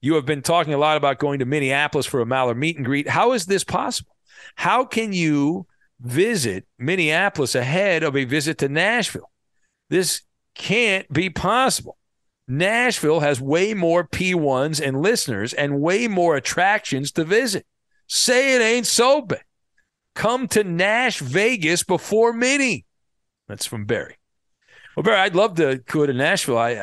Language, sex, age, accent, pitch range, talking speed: English, male, 50-69, American, 130-170 Hz, 160 wpm